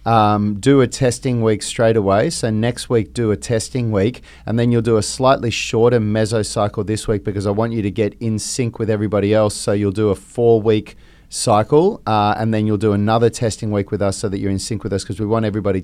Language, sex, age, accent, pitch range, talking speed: English, male, 30-49, Australian, 105-125 Hz, 240 wpm